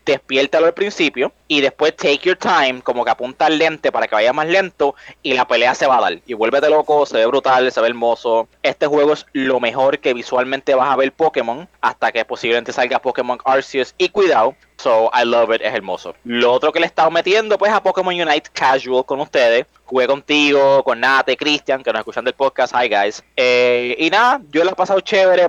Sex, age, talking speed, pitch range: male, 20-39, 220 wpm, 130-175 Hz